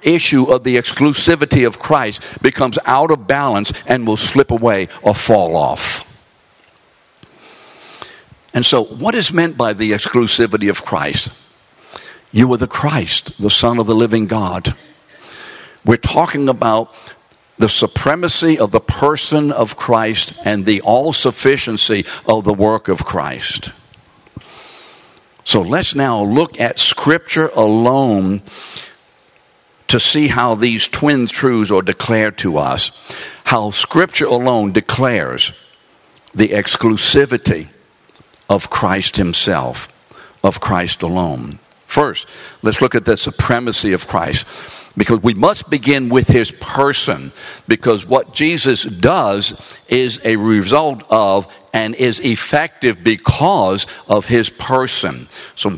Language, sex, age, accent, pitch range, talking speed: English, male, 60-79, American, 105-135 Hz, 125 wpm